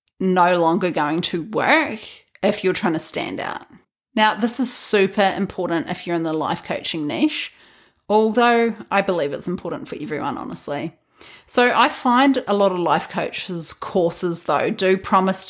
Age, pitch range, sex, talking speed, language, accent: 30-49, 180-225 Hz, female, 165 wpm, English, Australian